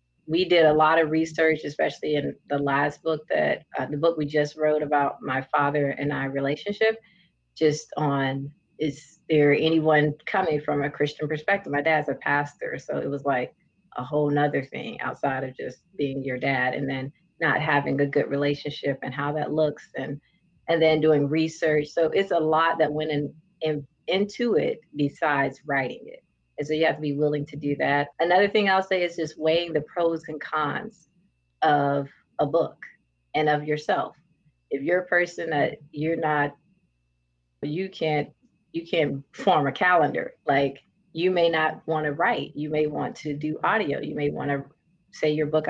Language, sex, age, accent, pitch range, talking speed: English, female, 30-49, American, 145-165 Hz, 185 wpm